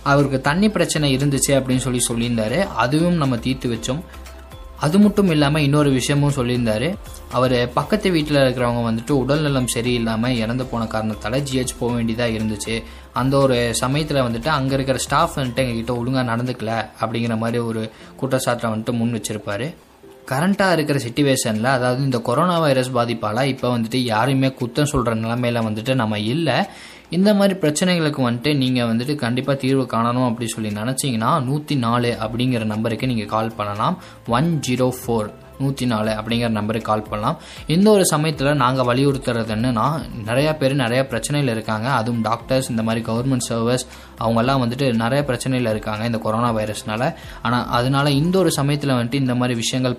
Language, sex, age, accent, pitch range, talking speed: Tamil, male, 20-39, native, 115-140 Hz, 155 wpm